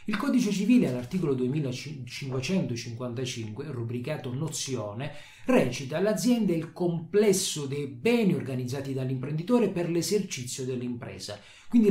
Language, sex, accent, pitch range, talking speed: Italian, male, native, 125-185 Hz, 100 wpm